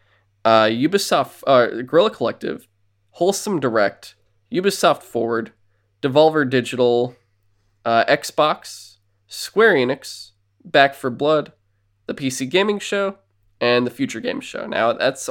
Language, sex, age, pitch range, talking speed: English, male, 20-39, 105-125 Hz, 115 wpm